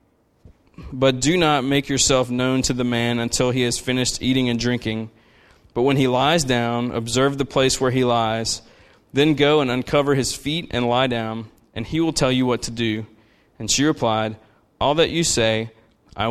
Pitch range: 120-155 Hz